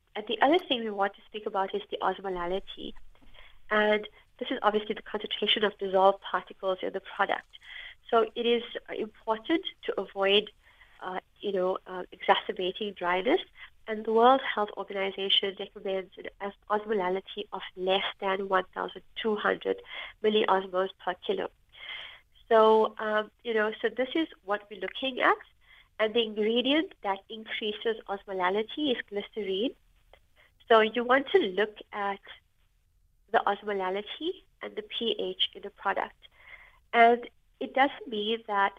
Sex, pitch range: female, 200-240 Hz